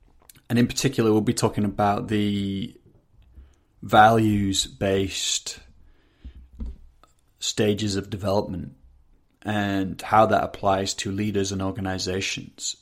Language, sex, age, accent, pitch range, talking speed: English, male, 30-49, British, 95-110 Hz, 95 wpm